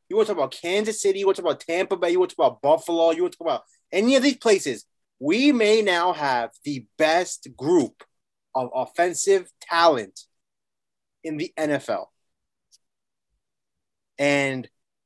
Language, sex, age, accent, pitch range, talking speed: English, male, 20-39, American, 145-195 Hz, 170 wpm